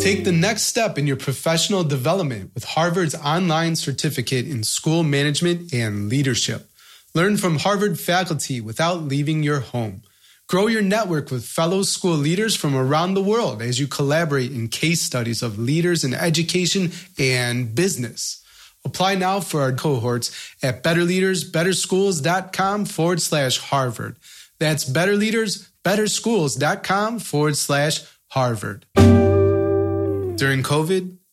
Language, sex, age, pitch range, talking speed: English, male, 30-49, 125-175 Hz, 125 wpm